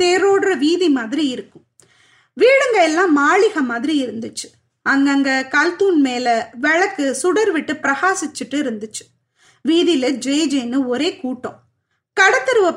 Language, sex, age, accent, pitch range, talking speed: Tamil, female, 30-49, native, 265-365 Hz, 105 wpm